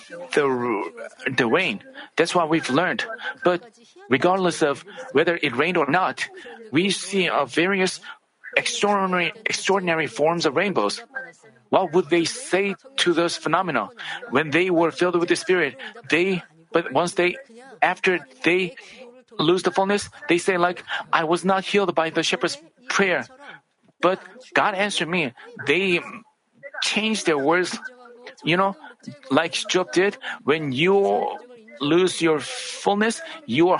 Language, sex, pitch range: Korean, male, 165-235 Hz